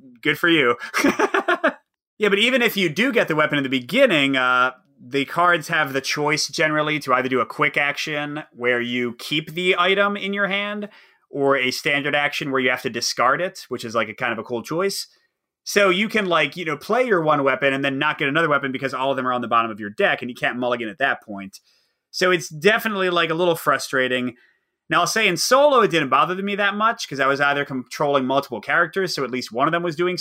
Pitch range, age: 130-185 Hz, 30-49